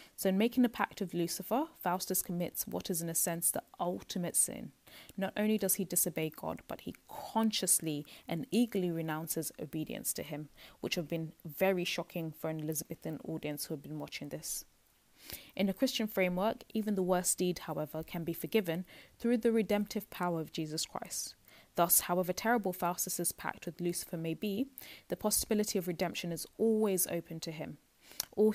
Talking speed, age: 175 wpm, 20-39